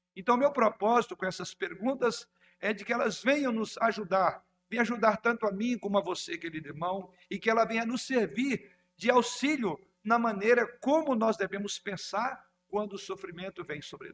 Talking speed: 180 wpm